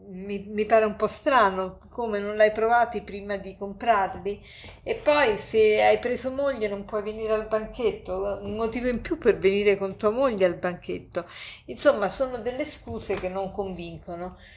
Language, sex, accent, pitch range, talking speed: Italian, female, native, 190-235 Hz, 175 wpm